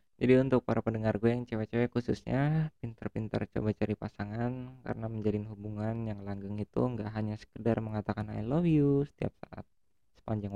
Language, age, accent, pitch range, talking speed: Indonesian, 20-39, native, 105-125 Hz, 160 wpm